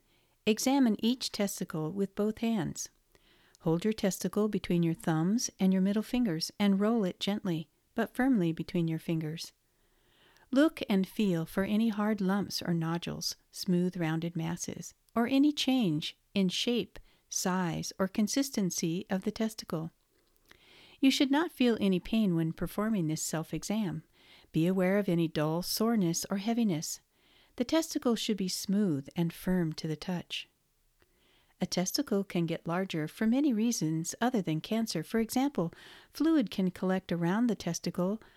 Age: 50-69